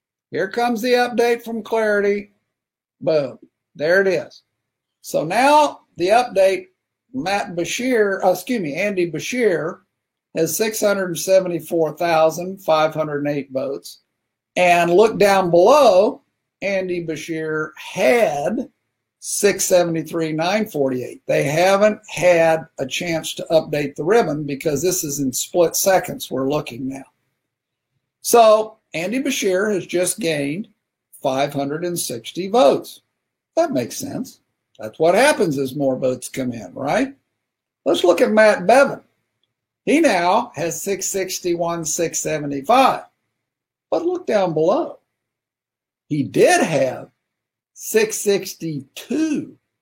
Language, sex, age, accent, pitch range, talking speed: English, male, 50-69, American, 155-220 Hz, 105 wpm